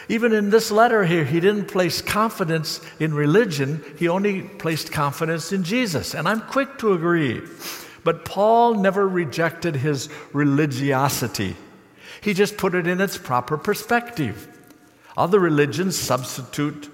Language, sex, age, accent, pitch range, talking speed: English, male, 60-79, American, 140-195 Hz, 140 wpm